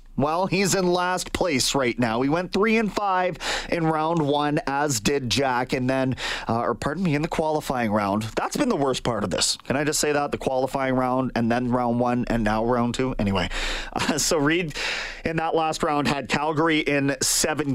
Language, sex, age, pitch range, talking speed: English, male, 30-49, 130-175 Hz, 215 wpm